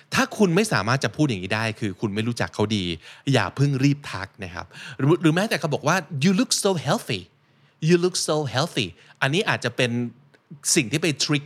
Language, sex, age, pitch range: Thai, male, 20-39, 110-155 Hz